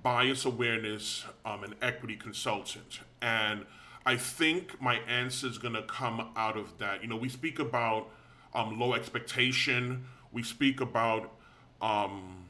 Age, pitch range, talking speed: 30-49, 110-130 Hz, 140 wpm